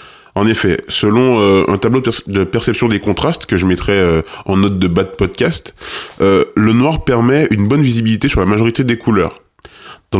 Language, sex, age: French, male, 20-39